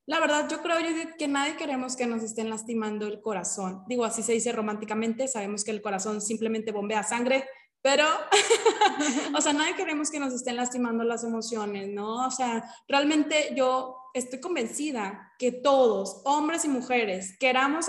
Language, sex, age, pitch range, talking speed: Spanish, female, 20-39, 230-280 Hz, 170 wpm